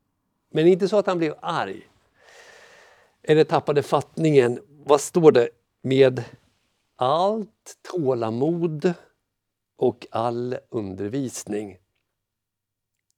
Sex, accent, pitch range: male, native, 120-185 Hz